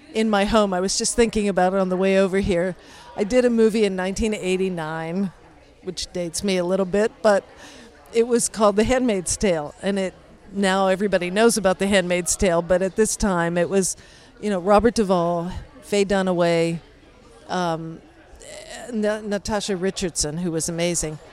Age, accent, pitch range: 50-69, American, 180-215 Hz